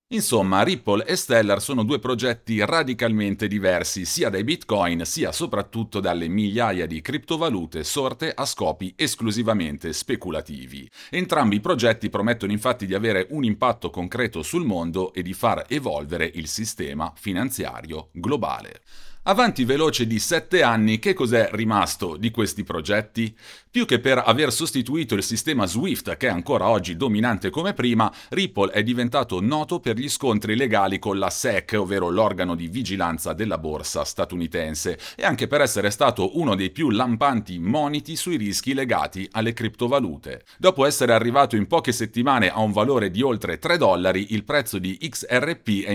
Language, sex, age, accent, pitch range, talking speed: Italian, male, 40-59, native, 95-125 Hz, 155 wpm